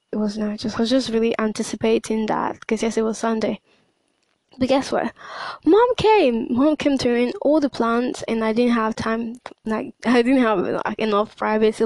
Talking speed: 195 wpm